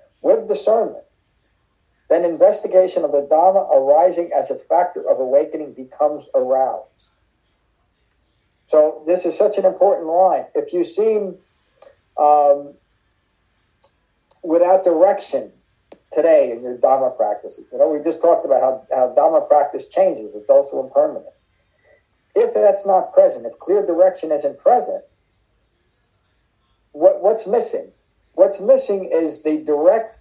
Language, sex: English, male